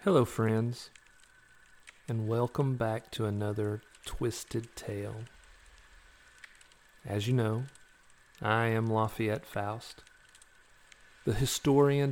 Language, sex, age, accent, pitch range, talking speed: English, male, 40-59, American, 110-130 Hz, 90 wpm